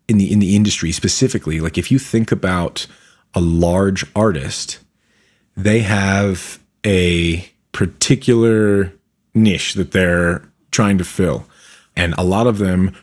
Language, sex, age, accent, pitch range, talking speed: English, male, 30-49, American, 85-110 Hz, 135 wpm